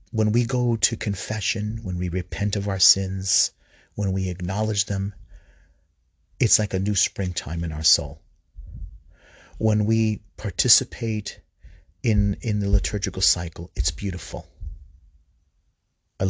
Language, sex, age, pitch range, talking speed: English, male, 40-59, 90-110 Hz, 125 wpm